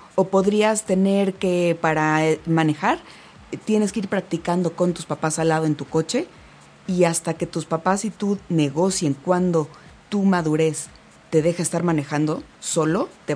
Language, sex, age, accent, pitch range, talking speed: Spanish, female, 30-49, Mexican, 170-215 Hz, 155 wpm